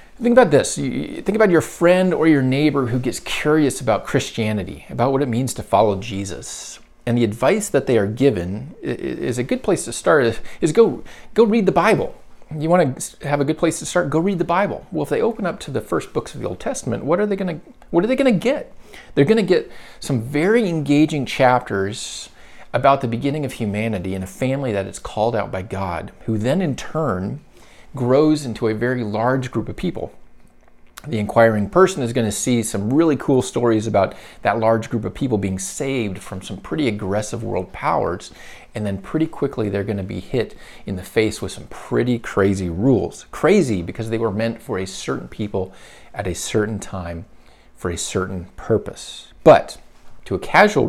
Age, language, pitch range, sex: 40-59, English, 100-145 Hz, male